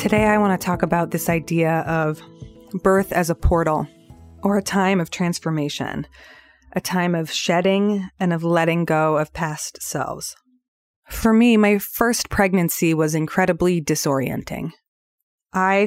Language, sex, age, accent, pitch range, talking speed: English, female, 20-39, American, 165-205 Hz, 145 wpm